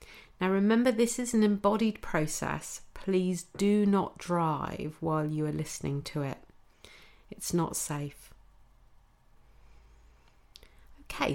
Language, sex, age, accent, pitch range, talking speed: English, female, 40-59, British, 145-200 Hz, 110 wpm